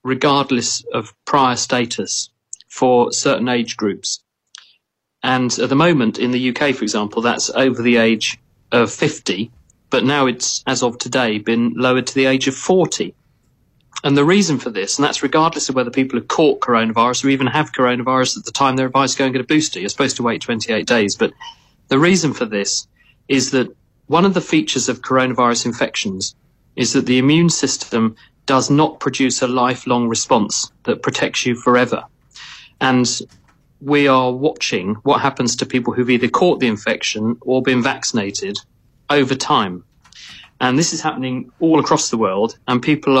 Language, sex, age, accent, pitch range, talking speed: English, male, 40-59, British, 120-145 Hz, 180 wpm